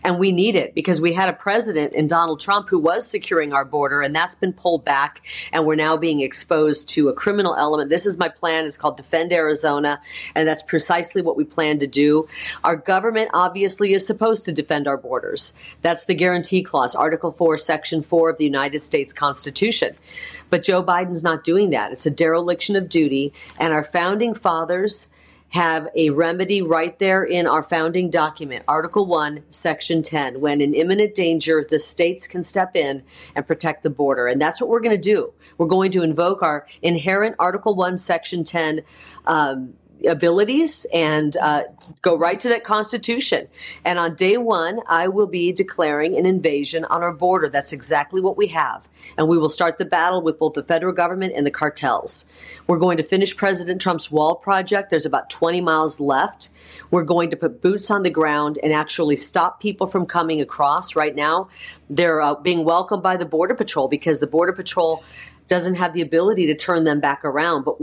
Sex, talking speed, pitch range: female, 195 wpm, 155-185 Hz